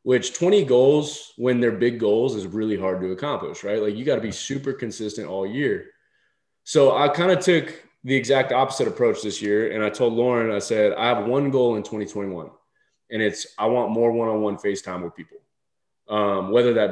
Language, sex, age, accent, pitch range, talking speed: English, male, 20-39, American, 115-160 Hz, 200 wpm